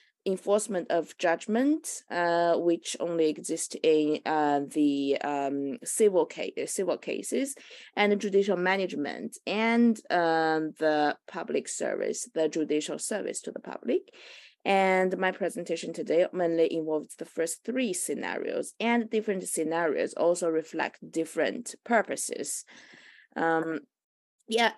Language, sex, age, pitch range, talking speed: English, female, 20-39, 160-225 Hz, 110 wpm